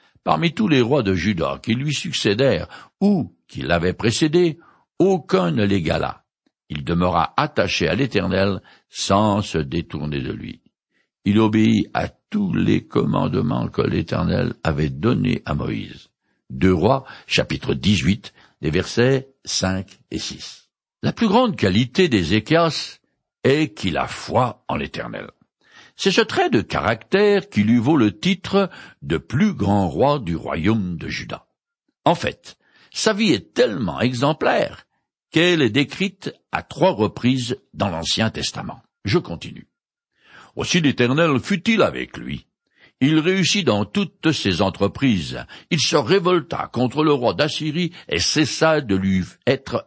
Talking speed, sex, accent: 140 wpm, male, French